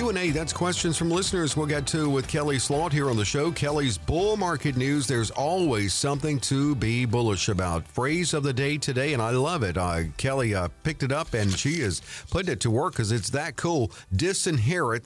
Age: 50-69